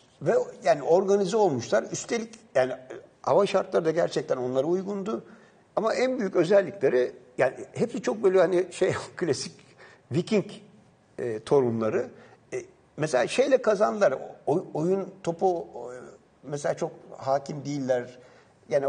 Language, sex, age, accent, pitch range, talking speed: Turkish, male, 60-79, native, 130-205 Hz, 125 wpm